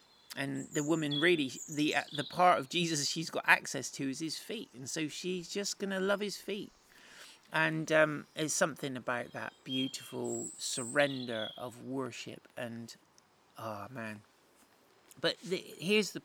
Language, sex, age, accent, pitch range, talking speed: English, male, 40-59, British, 130-170 Hz, 155 wpm